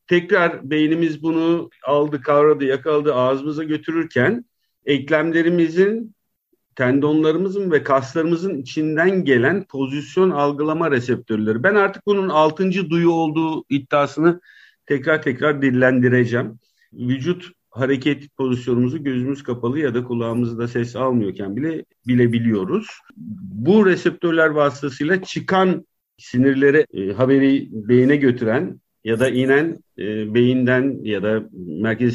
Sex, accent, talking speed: male, native, 105 wpm